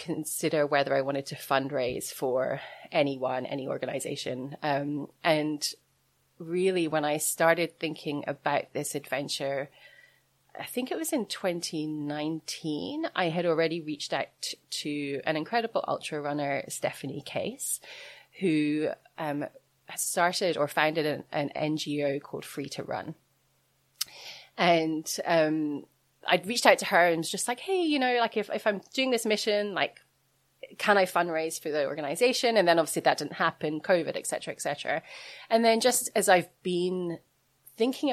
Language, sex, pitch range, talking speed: English, female, 155-200 Hz, 150 wpm